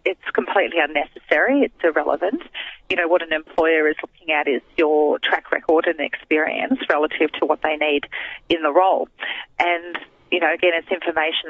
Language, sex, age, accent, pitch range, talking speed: English, female, 30-49, Australian, 155-180 Hz, 170 wpm